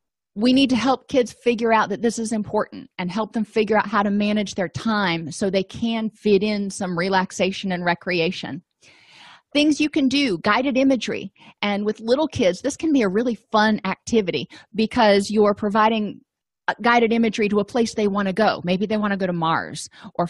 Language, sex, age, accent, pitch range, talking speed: English, female, 30-49, American, 195-235 Hz, 200 wpm